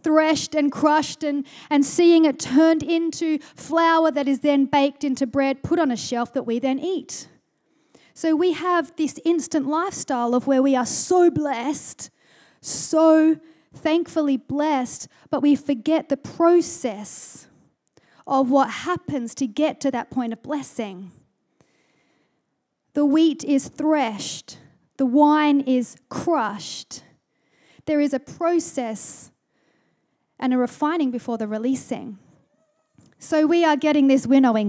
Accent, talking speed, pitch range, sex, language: Australian, 135 wpm, 265-325 Hz, female, English